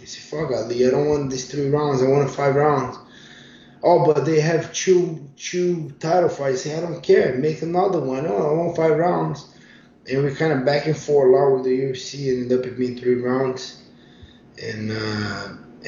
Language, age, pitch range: English, 20-39, 125-145 Hz